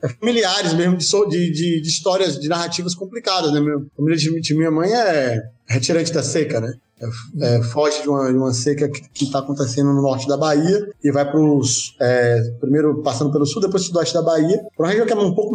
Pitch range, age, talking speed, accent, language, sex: 145-180 Hz, 20-39, 210 wpm, Brazilian, Portuguese, male